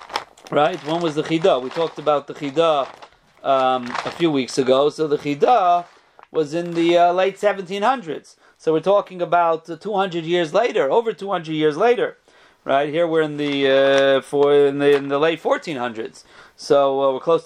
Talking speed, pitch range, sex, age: 180 wpm, 155-220 Hz, male, 40-59